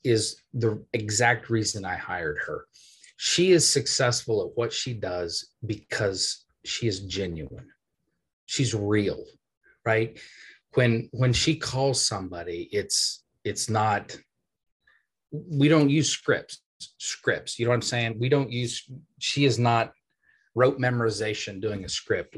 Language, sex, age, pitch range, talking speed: English, male, 30-49, 110-130 Hz, 135 wpm